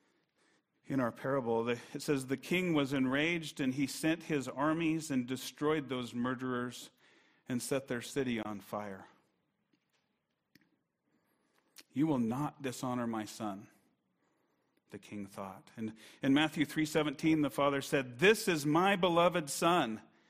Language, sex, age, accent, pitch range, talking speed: English, male, 40-59, American, 135-190 Hz, 135 wpm